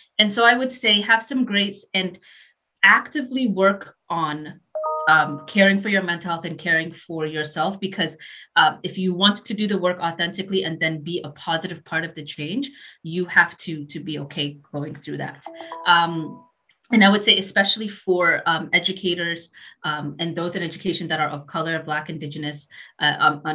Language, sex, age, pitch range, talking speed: English, female, 30-49, 160-195 Hz, 185 wpm